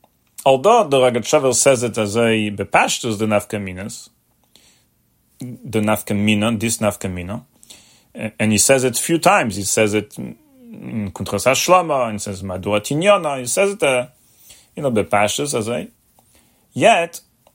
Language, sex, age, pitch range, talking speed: English, male, 40-59, 110-145 Hz, 135 wpm